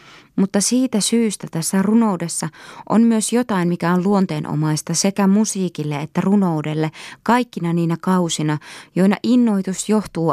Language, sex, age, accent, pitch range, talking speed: Finnish, female, 20-39, native, 155-195 Hz, 120 wpm